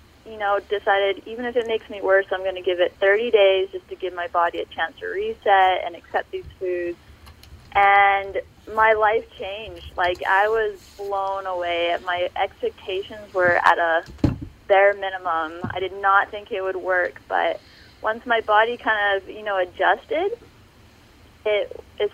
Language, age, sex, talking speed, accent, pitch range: English, 20-39, female, 175 wpm, American, 180-215 Hz